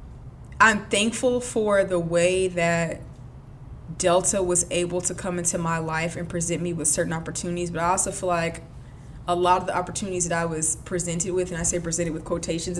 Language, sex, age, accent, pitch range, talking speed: English, female, 20-39, American, 165-190 Hz, 190 wpm